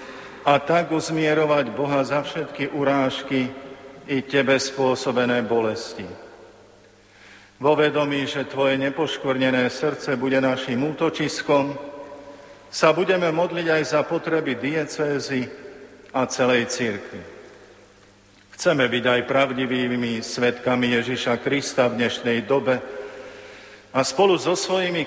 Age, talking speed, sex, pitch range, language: 50-69, 105 wpm, male, 125-145 Hz, Slovak